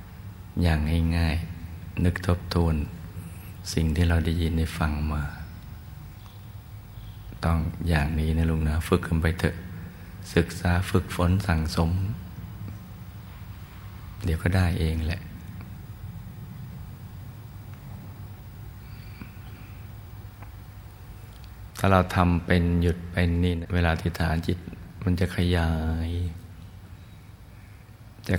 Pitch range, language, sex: 85-95 Hz, Thai, male